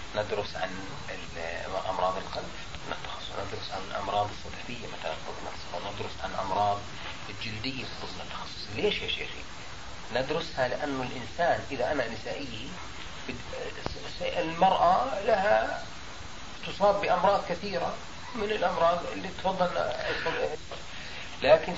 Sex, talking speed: male, 95 wpm